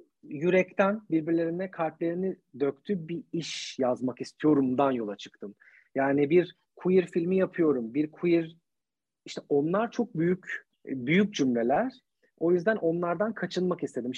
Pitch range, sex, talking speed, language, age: 150-180 Hz, male, 120 wpm, Turkish, 40-59